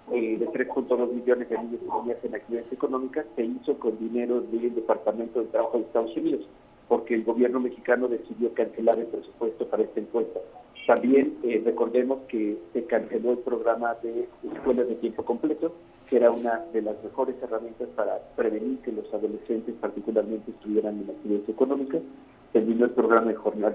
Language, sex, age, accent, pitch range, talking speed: Spanish, male, 50-69, Mexican, 115-145 Hz, 170 wpm